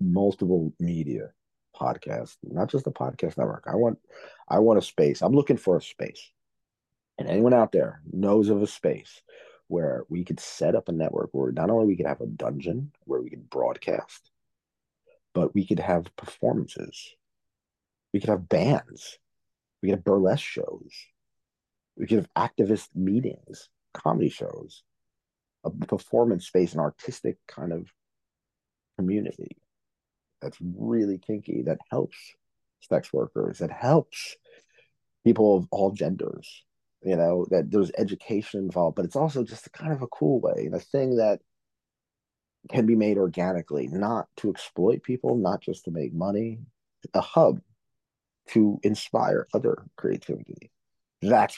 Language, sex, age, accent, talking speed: English, male, 40-59, American, 145 wpm